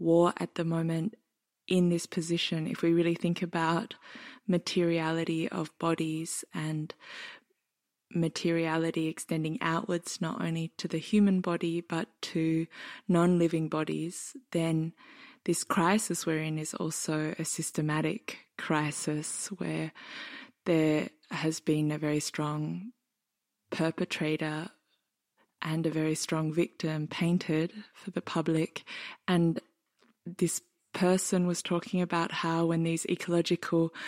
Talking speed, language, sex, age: 115 wpm, English, female, 20-39